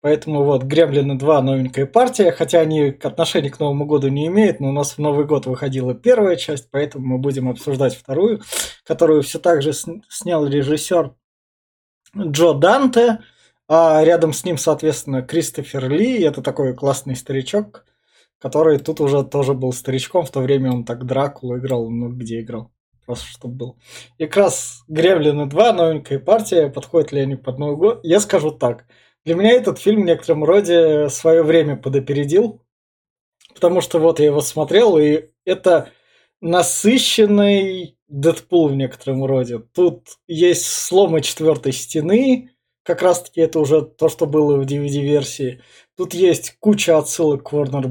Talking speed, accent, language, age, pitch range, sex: 160 wpm, native, Russian, 20-39, 140-170 Hz, male